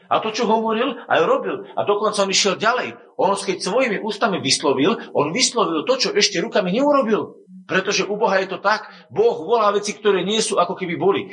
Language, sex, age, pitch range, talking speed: Slovak, male, 50-69, 135-205 Hz, 200 wpm